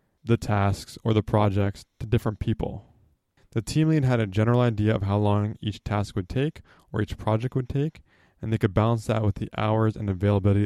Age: 20-39